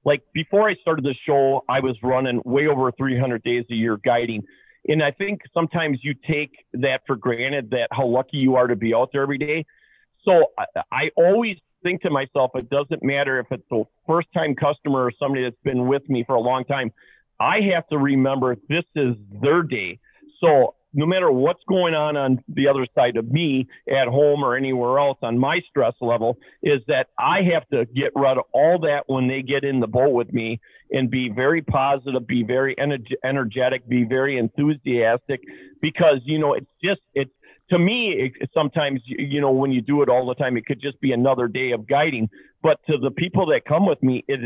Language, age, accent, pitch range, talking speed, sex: English, 40-59, American, 125-150 Hz, 215 wpm, male